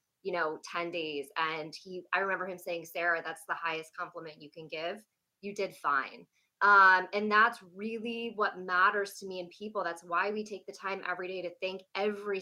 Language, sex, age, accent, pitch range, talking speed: English, female, 20-39, American, 175-215 Hz, 205 wpm